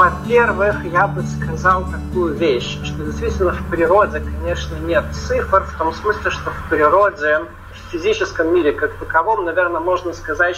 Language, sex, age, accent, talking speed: Russian, male, 40-59, native, 155 wpm